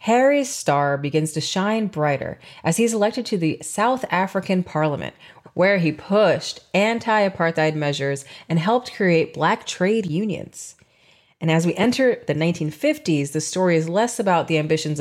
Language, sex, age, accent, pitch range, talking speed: English, female, 30-49, American, 155-215 Hz, 150 wpm